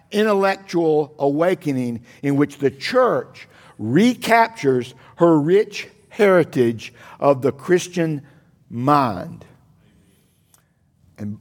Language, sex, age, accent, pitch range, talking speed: English, male, 60-79, American, 115-175 Hz, 80 wpm